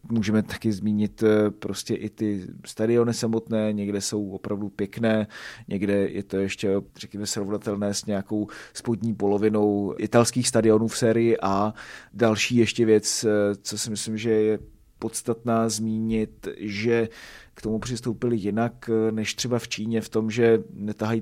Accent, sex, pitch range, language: native, male, 105-115 Hz, Czech